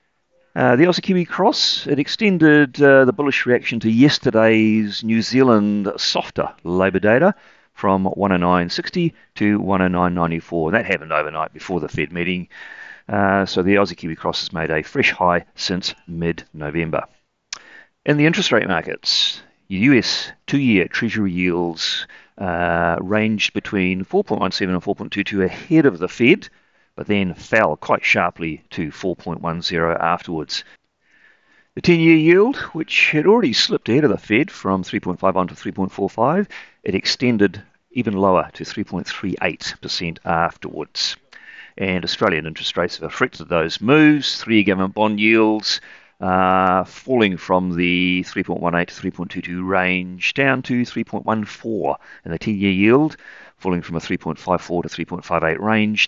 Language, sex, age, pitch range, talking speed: English, male, 40-59, 90-125 Hz, 135 wpm